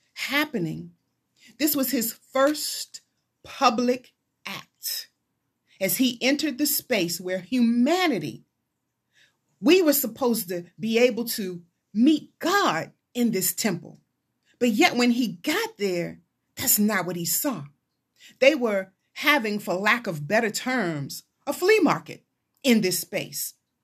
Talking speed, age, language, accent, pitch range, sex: 130 wpm, 30-49, English, American, 210-325 Hz, female